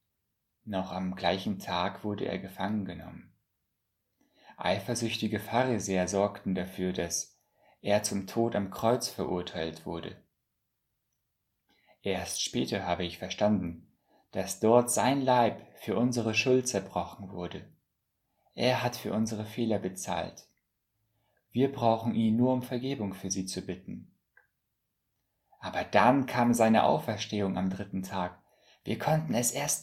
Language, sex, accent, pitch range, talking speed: German, male, German, 95-115 Hz, 125 wpm